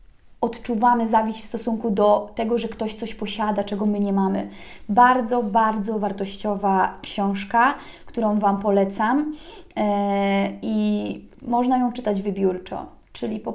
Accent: native